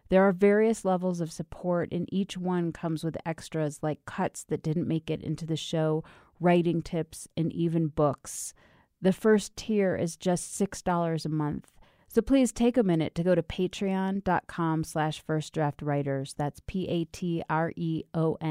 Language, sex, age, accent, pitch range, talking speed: English, female, 30-49, American, 150-185 Hz, 150 wpm